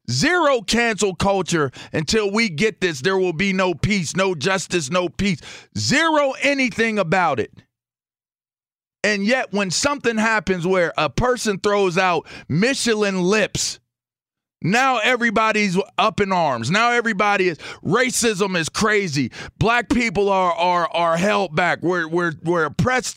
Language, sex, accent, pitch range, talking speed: English, male, American, 180-240 Hz, 140 wpm